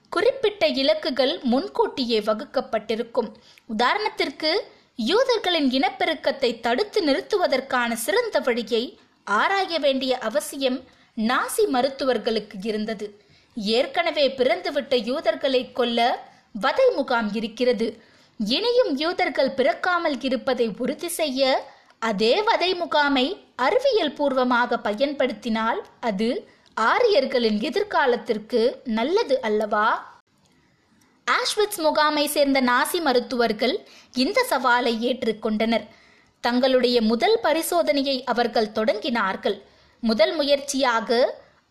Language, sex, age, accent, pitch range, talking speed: Tamil, female, 20-39, native, 235-320 Hz, 55 wpm